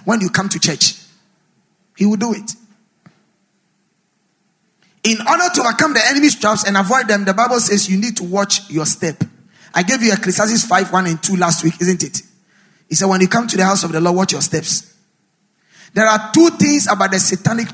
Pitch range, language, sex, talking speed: 180-215 Hz, English, male, 210 wpm